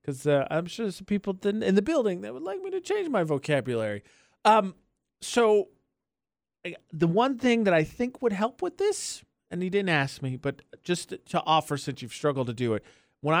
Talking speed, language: 205 wpm, English